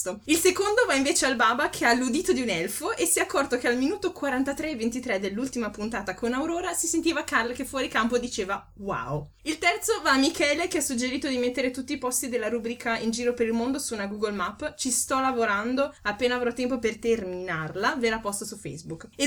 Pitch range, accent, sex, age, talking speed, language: 230-280 Hz, native, female, 20-39, 220 wpm, Italian